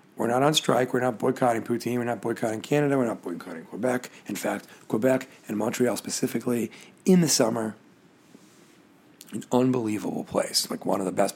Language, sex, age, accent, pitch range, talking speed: English, male, 40-59, American, 110-130 Hz, 175 wpm